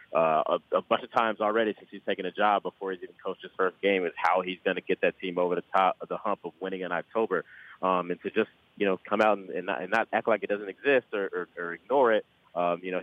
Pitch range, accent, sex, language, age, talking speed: 90-105 Hz, American, male, English, 30-49, 295 wpm